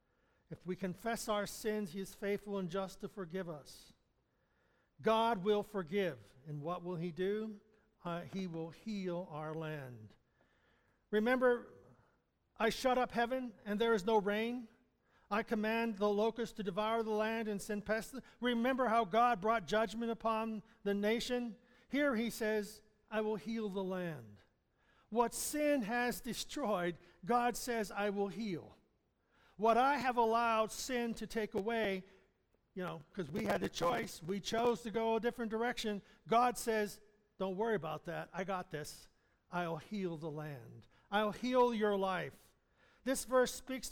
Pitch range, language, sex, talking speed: 185-230 Hz, English, male, 155 wpm